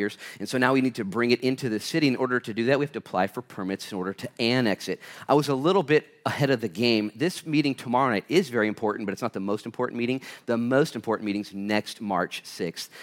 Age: 30-49